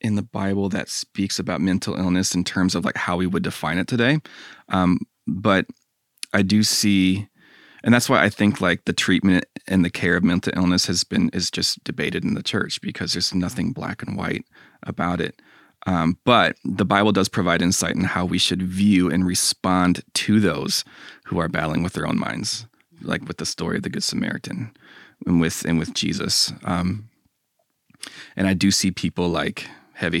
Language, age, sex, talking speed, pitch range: English, 30-49, male, 195 wpm, 90-100 Hz